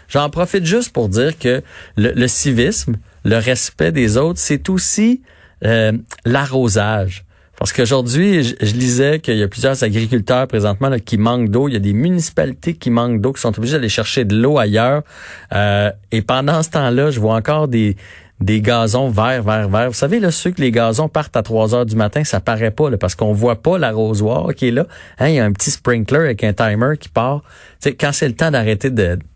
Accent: Canadian